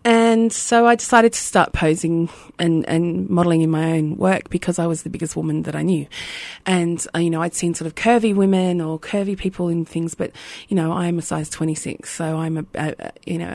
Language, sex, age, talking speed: English, female, 20-39, 230 wpm